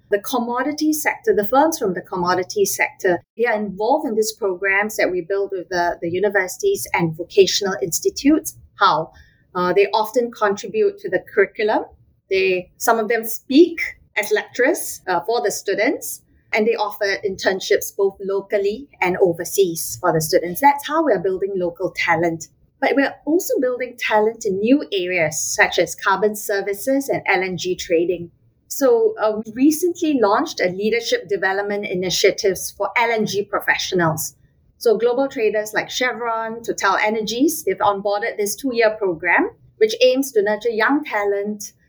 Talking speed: 150 wpm